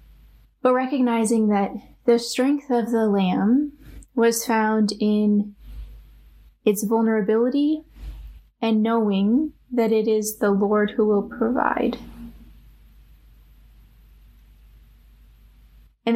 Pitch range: 210-245 Hz